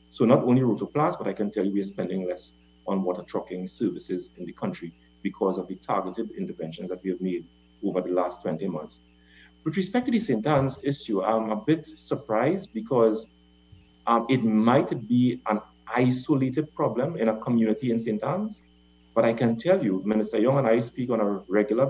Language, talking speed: English, 195 wpm